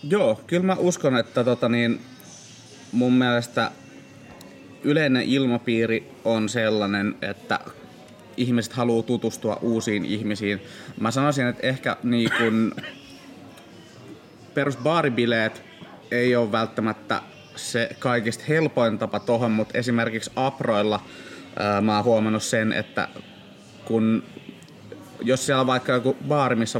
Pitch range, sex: 110-125 Hz, male